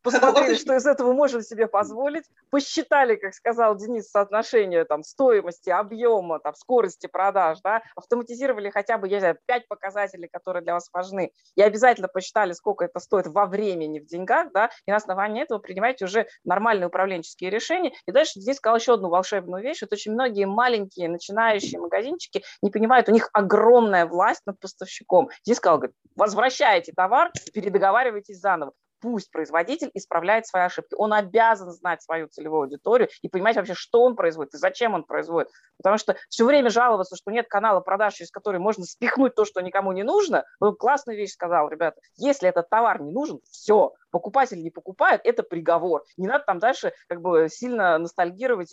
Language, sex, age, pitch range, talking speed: Russian, female, 30-49, 180-235 Hz, 175 wpm